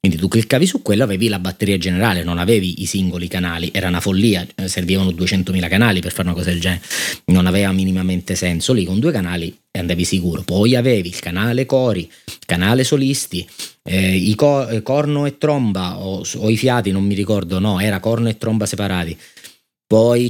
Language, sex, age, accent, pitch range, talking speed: Italian, male, 30-49, native, 90-115 Hz, 195 wpm